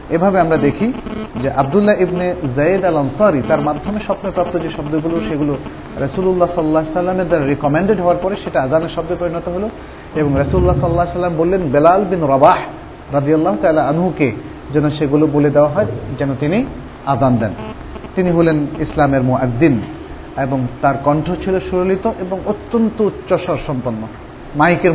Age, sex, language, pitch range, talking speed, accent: 40-59, male, Bengali, 140-180 Hz, 110 wpm, native